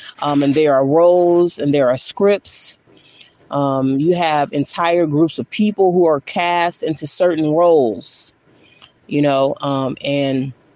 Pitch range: 145-185 Hz